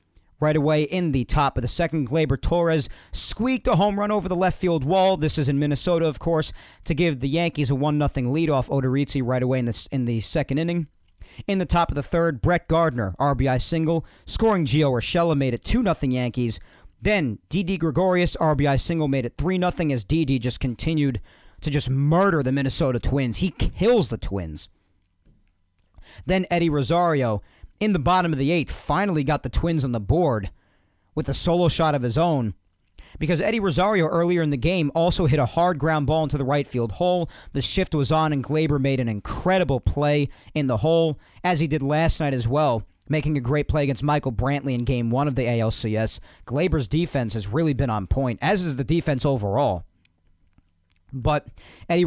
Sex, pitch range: male, 120-165 Hz